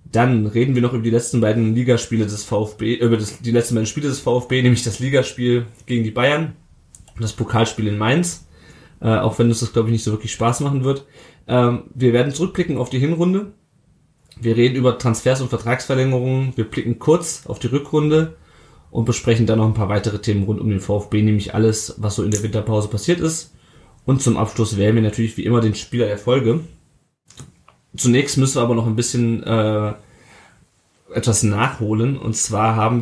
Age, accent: 20-39, German